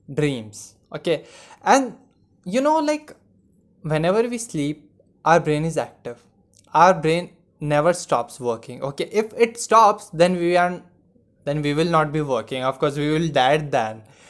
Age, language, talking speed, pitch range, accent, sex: 20-39, Hindi, 155 wpm, 145-180 Hz, native, male